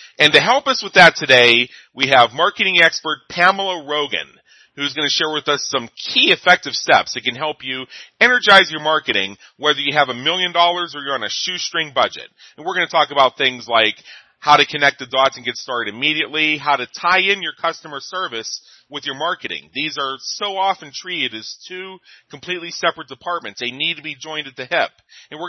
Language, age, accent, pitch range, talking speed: English, 40-59, American, 135-170 Hz, 210 wpm